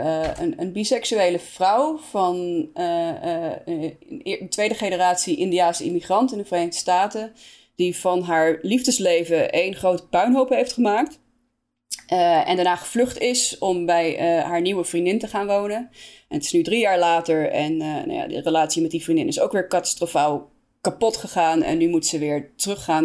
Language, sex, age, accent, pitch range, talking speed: Dutch, female, 20-39, Dutch, 165-225 Hz, 175 wpm